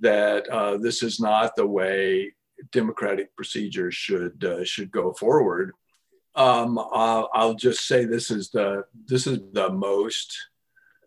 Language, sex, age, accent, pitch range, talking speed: English, male, 50-69, American, 105-150 Hz, 140 wpm